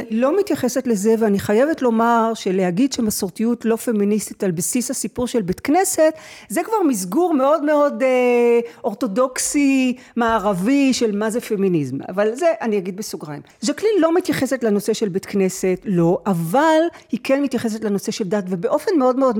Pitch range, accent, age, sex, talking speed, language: 205-280 Hz, native, 40-59, female, 160 wpm, Hebrew